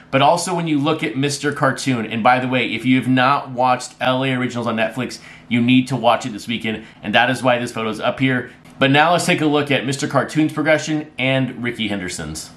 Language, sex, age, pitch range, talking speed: English, male, 30-49, 115-145 Hz, 240 wpm